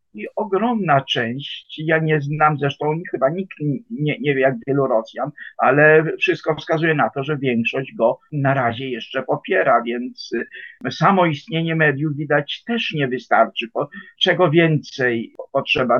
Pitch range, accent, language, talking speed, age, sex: 145-185 Hz, Polish, English, 145 wpm, 50-69, male